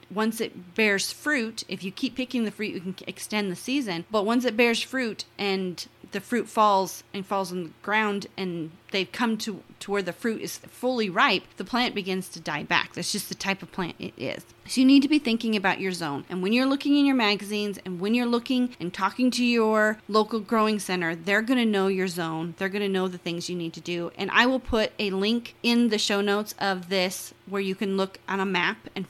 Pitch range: 185-225 Hz